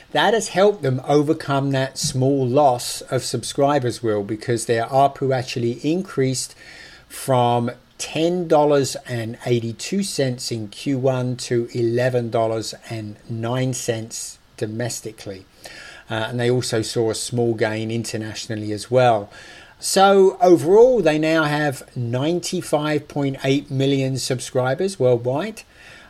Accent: British